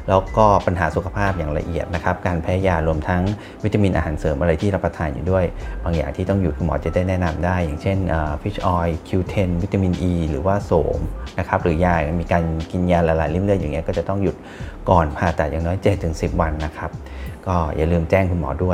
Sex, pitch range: male, 80-95 Hz